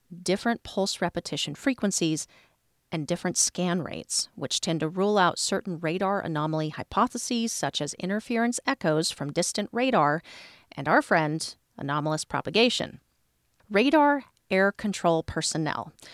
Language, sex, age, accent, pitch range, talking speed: English, female, 40-59, American, 150-200 Hz, 125 wpm